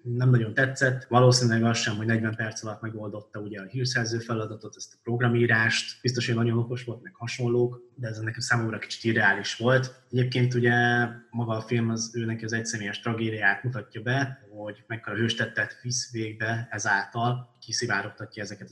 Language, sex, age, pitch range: Hungarian, male, 20-39, 110-125 Hz